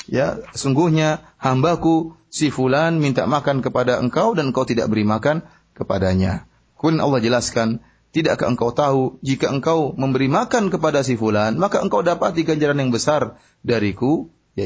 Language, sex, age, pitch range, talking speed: Malay, male, 30-49, 110-155 Hz, 150 wpm